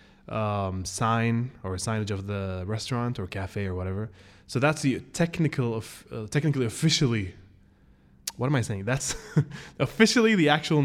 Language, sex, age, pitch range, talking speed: English, male, 20-39, 95-125 Hz, 150 wpm